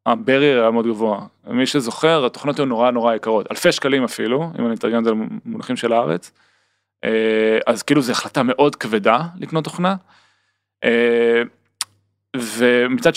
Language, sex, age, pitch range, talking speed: Hebrew, male, 20-39, 115-145 Hz, 140 wpm